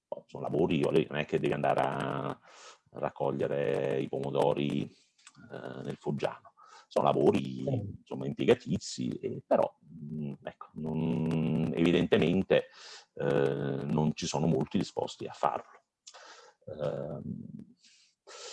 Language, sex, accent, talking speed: Italian, male, native, 90 wpm